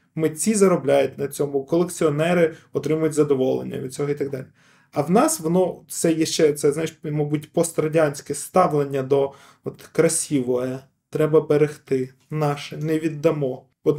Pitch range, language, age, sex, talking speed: 140-175 Hz, Ukrainian, 20-39, male, 140 wpm